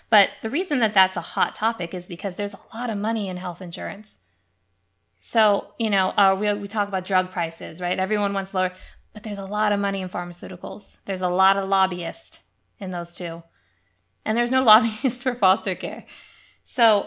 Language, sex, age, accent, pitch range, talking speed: English, female, 20-39, American, 175-215 Hz, 195 wpm